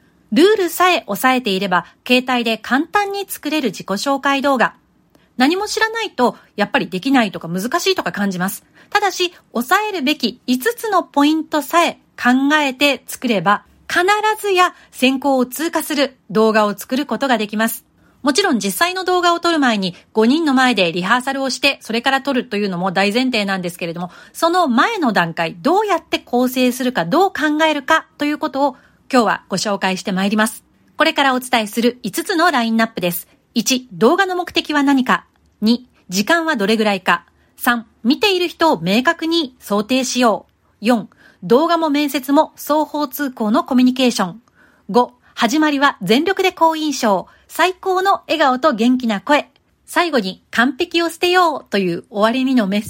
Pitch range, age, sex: 220-320 Hz, 40-59, female